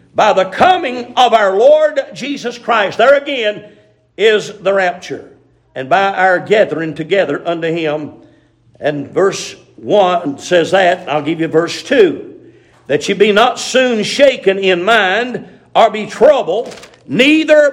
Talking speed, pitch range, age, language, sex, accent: 140 wpm, 175-250 Hz, 50-69, English, male, American